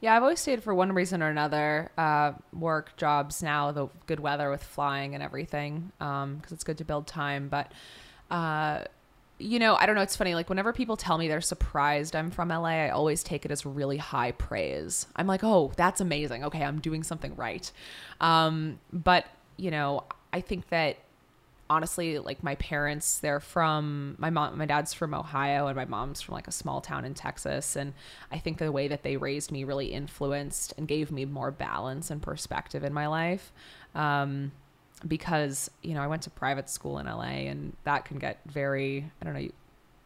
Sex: female